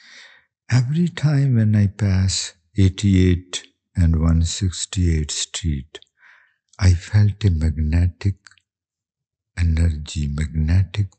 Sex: male